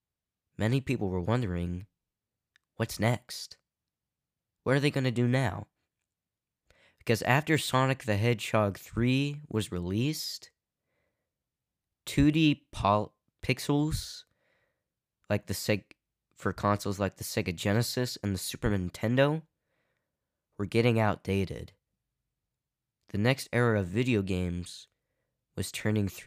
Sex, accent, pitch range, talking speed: male, American, 95-120 Hz, 110 wpm